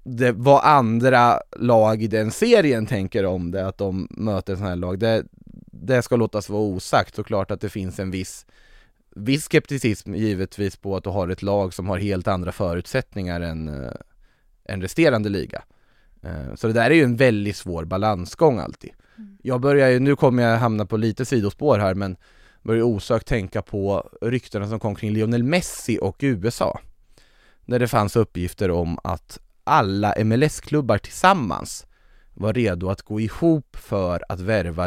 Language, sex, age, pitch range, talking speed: English, male, 20-39, 95-130 Hz, 170 wpm